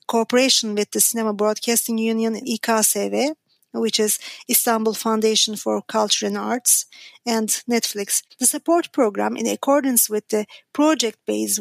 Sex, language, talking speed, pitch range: female, German, 130 wpm, 215-250 Hz